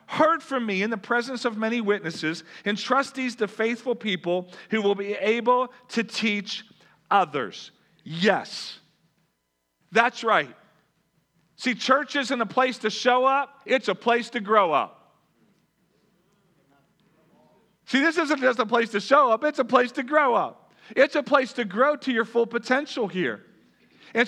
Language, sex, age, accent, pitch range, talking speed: English, male, 40-59, American, 200-260 Hz, 160 wpm